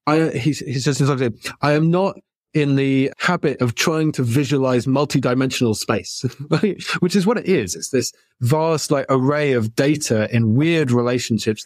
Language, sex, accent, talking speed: French, male, British, 160 wpm